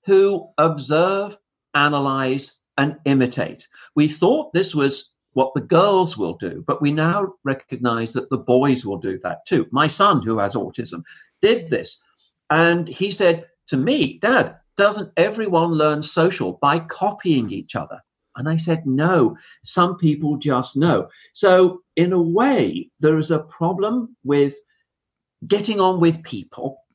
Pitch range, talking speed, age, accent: 140-180 Hz, 150 wpm, 50-69, British